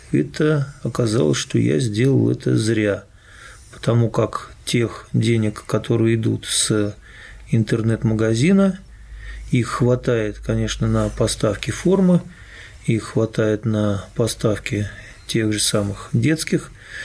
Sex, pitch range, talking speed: male, 110-130 Hz, 100 wpm